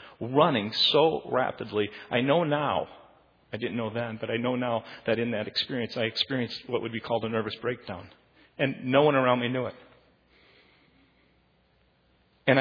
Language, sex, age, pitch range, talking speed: English, male, 40-59, 120-145 Hz, 165 wpm